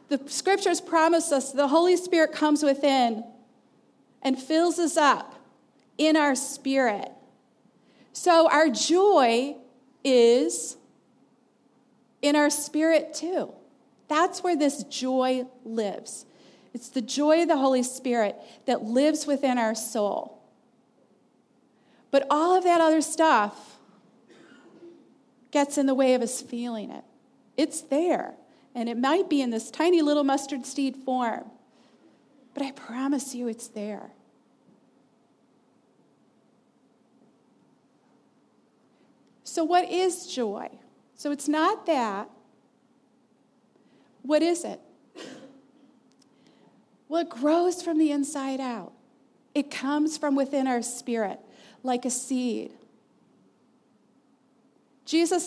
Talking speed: 110 wpm